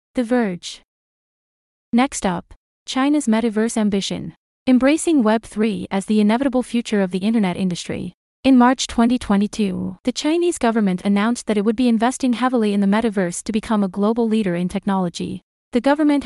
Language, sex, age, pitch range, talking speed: English, female, 30-49, 200-250 Hz, 155 wpm